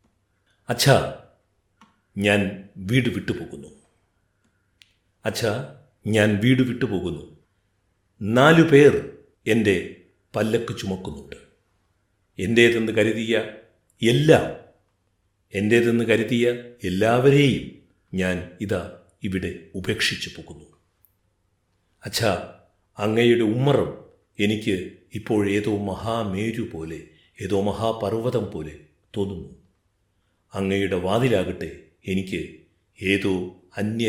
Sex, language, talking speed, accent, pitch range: male, Malayalam, 70 wpm, native, 95-115 Hz